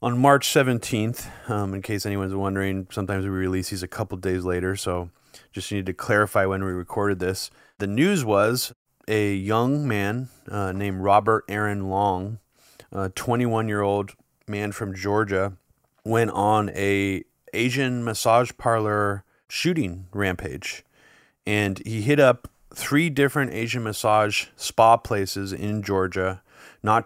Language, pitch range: English, 100-120 Hz